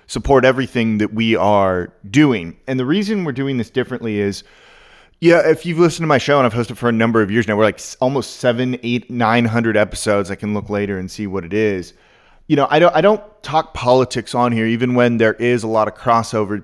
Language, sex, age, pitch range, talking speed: English, male, 30-49, 110-135 Hz, 235 wpm